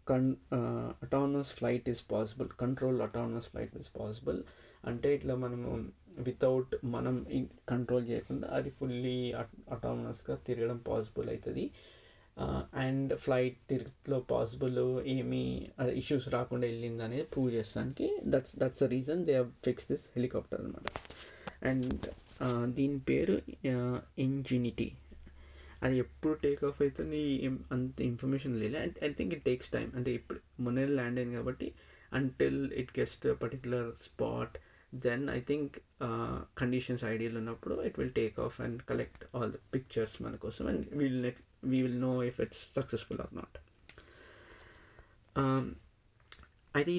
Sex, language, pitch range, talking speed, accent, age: male, Telugu, 120-135 Hz, 135 wpm, native, 20-39